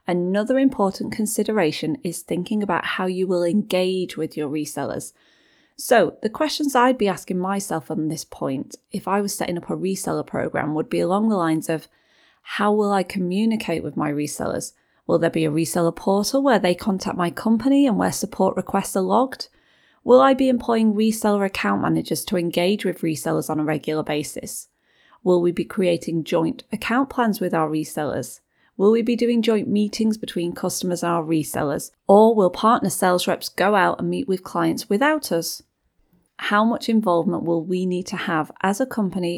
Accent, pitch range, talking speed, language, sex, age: British, 170-225 Hz, 185 wpm, English, female, 30-49